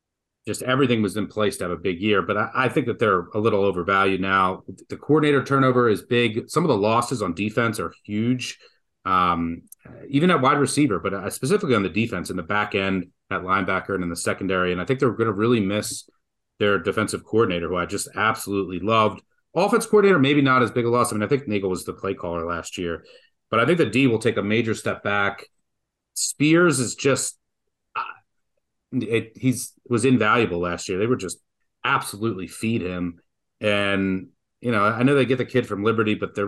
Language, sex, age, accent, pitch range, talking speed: English, male, 30-49, American, 95-125 Hz, 205 wpm